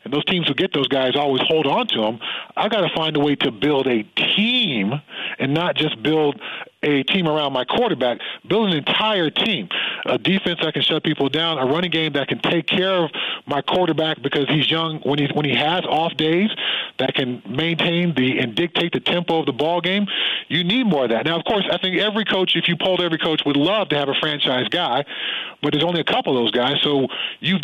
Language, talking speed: English, 235 wpm